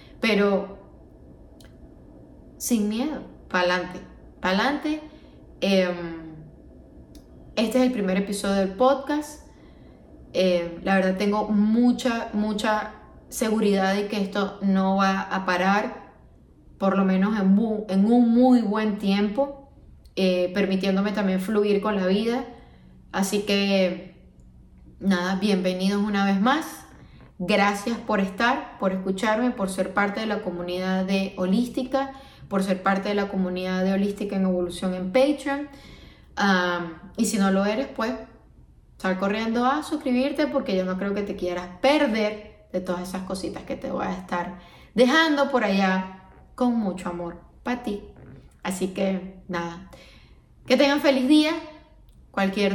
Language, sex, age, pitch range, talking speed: Spanish, female, 10-29, 185-235 Hz, 135 wpm